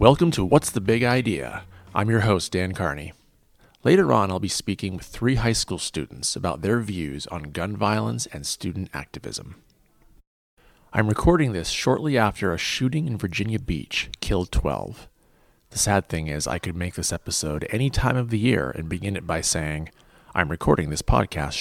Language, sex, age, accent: English, male, 30-49, American